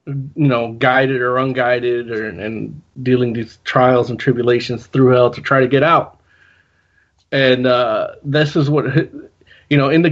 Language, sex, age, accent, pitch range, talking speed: English, male, 20-39, American, 125-155 Hz, 160 wpm